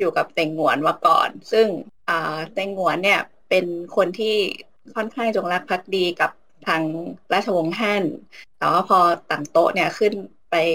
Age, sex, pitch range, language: 20-39, female, 170-220 Hz, Thai